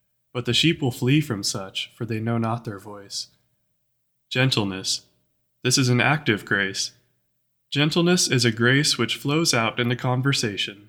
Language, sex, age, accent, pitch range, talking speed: English, male, 20-39, American, 115-145 Hz, 160 wpm